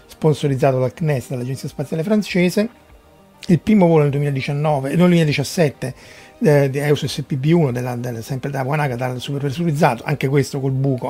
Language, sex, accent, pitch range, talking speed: Italian, male, native, 130-160 Hz, 155 wpm